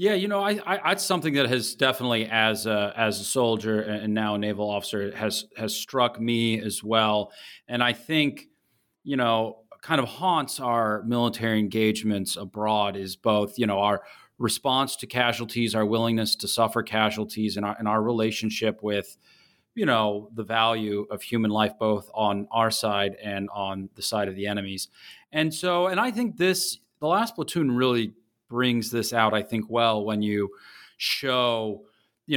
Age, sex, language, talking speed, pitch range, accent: 30-49, male, English, 175 wpm, 105-130 Hz, American